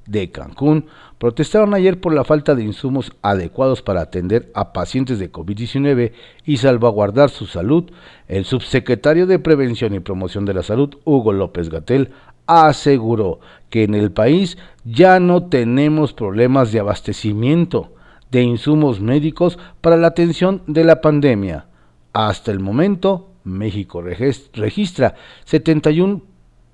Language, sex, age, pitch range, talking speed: Spanish, male, 50-69, 100-155 Hz, 130 wpm